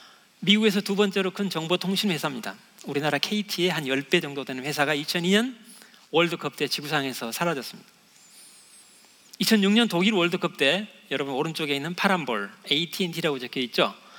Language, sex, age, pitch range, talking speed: English, male, 40-59, 155-210 Hz, 115 wpm